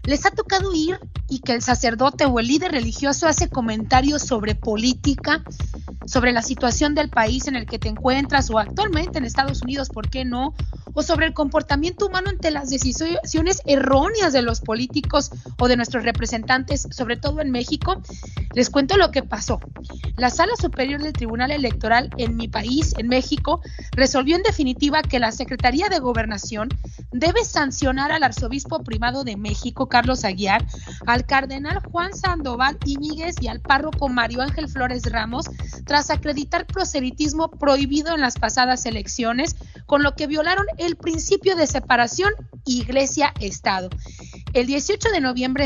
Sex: female